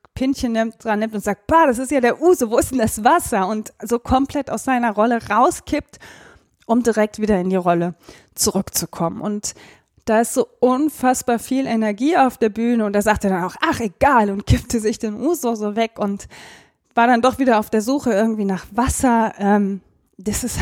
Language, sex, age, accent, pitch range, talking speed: German, female, 20-39, German, 210-260 Hz, 205 wpm